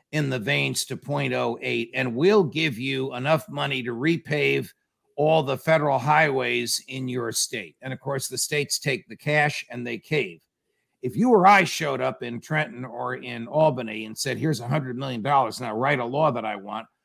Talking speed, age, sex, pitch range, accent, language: 195 wpm, 50-69, male, 125-160 Hz, American, English